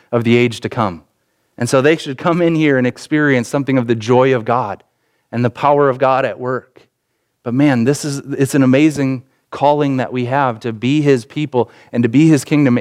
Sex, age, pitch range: male, 30-49, 115-140 Hz